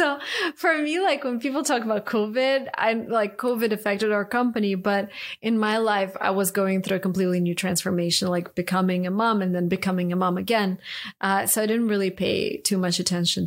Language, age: English, 30-49